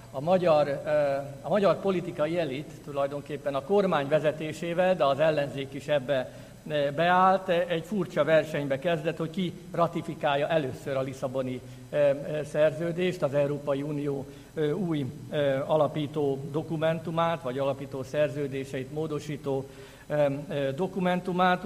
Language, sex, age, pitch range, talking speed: Hungarian, male, 50-69, 135-160 Hz, 105 wpm